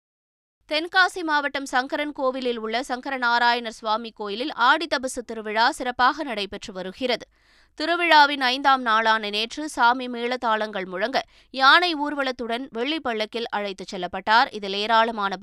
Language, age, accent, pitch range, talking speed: Tamil, 20-39, native, 220-270 Hz, 110 wpm